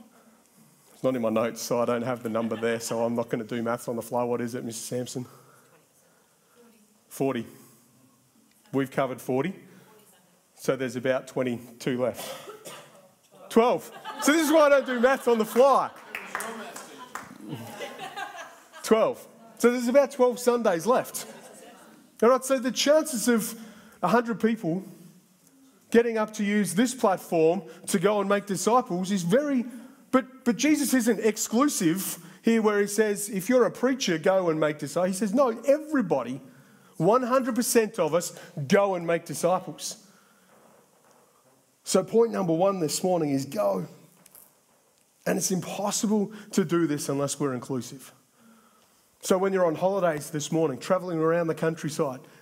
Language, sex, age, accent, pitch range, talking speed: English, male, 30-49, Australian, 150-235 Hz, 150 wpm